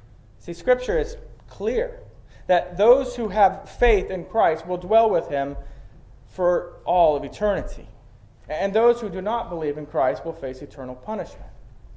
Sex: male